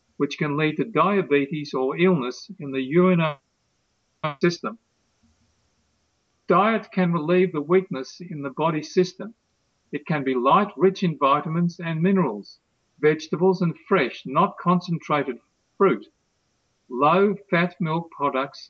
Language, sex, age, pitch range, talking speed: English, male, 50-69, 140-180 Hz, 120 wpm